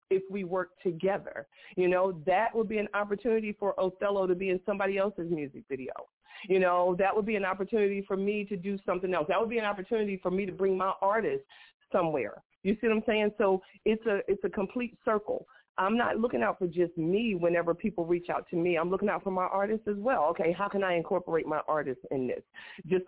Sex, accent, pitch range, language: female, American, 180-230 Hz, English